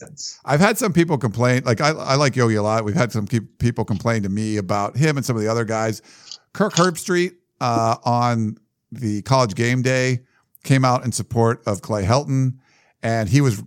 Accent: American